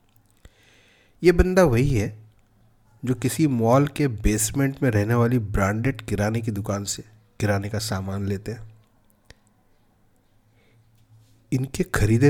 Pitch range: 105-120 Hz